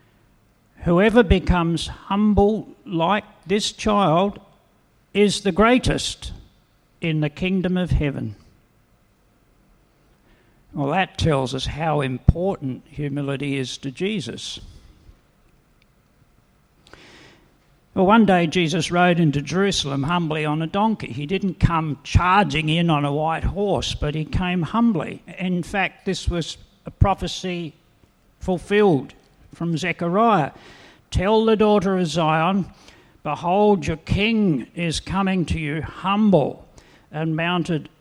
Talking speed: 115 wpm